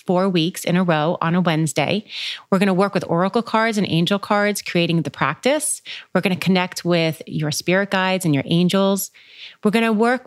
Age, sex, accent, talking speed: 30-49, female, American, 195 wpm